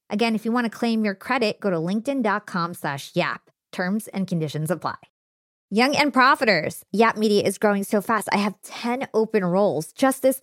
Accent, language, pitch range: American, English, 180-245 Hz